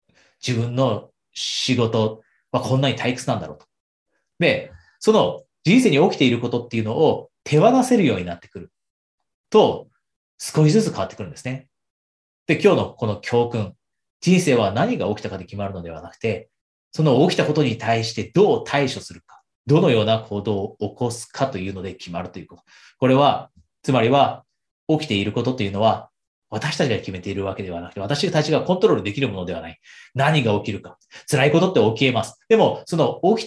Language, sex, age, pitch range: Japanese, male, 30-49, 105-150 Hz